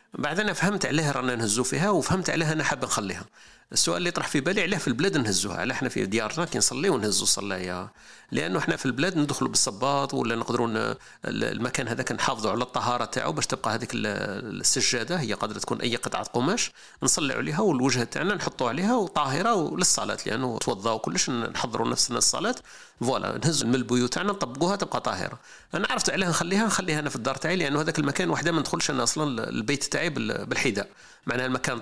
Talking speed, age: 175 wpm, 40-59